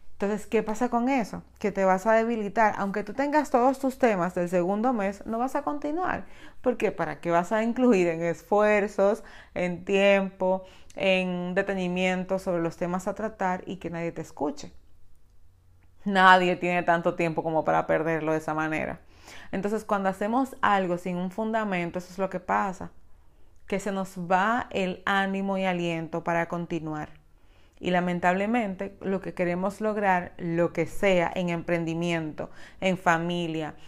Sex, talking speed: female, 160 wpm